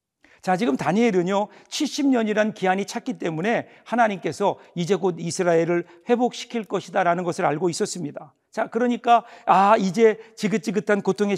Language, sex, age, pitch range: Korean, male, 50-69, 175-225 Hz